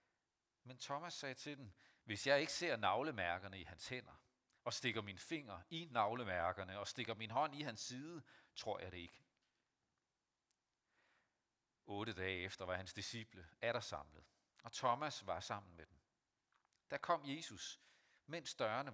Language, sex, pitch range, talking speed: Danish, male, 95-115 Hz, 155 wpm